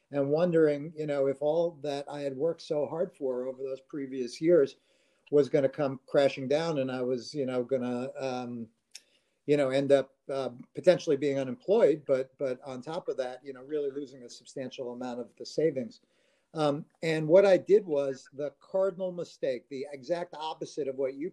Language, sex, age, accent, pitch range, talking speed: English, male, 50-69, American, 135-160 Hz, 195 wpm